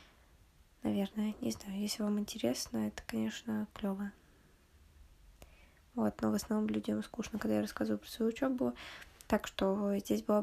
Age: 20-39